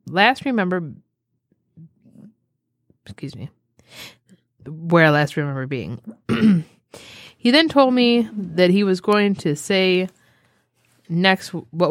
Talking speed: 100 wpm